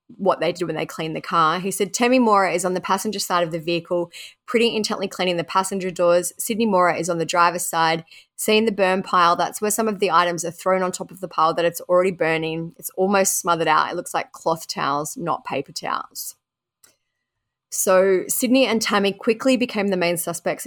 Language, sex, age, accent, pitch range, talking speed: English, female, 20-39, Australian, 170-200 Hz, 220 wpm